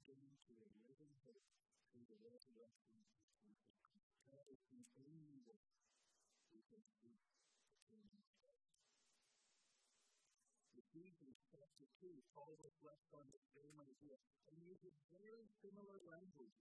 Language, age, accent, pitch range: English, 50-69, American, 135-195 Hz